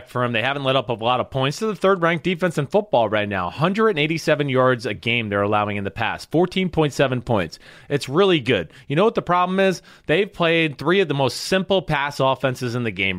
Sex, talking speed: male, 230 wpm